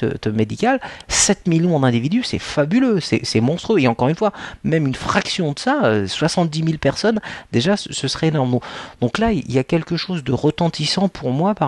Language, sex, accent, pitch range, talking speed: French, male, French, 125-180 Hz, 190 wpm